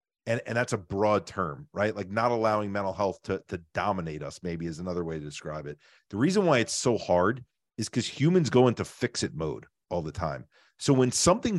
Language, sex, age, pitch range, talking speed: English, male, 40-59, 100-120 Hz, 225 wpm